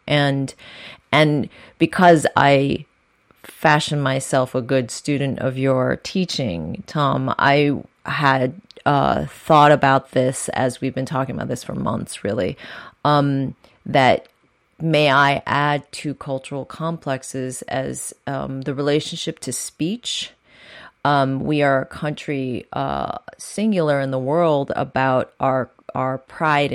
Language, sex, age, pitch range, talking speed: English, female, 30-49, 135-155 Hz, 125 wpm